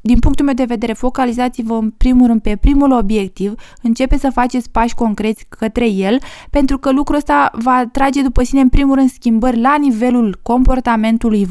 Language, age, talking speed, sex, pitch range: Romanian, 20-39, 175 wpm, female, 215-260 Hz